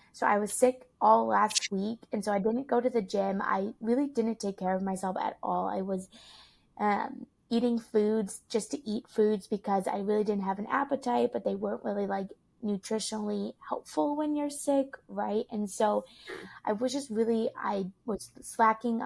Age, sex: 20-39, female